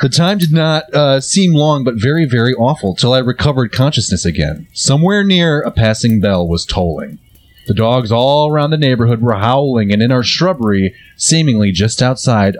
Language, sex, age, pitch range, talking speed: English, male, 30-49, 105-150 Hz, 180 wpm